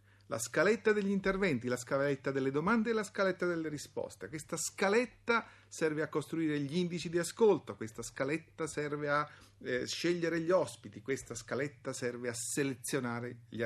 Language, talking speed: Italian, 160 wpm